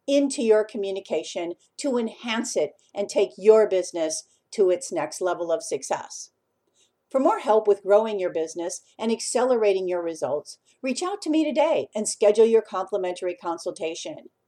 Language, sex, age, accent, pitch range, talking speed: English, female, 50-69, American, 190-265 Hz, 155 wpm